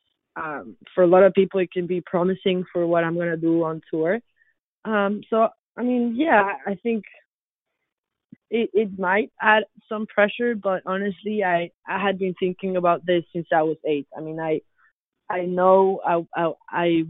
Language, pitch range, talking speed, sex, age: English, 165-195 Hz, 185 wpm, female, 20-39